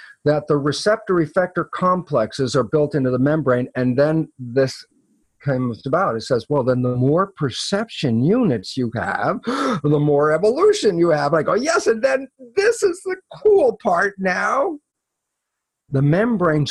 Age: 50-69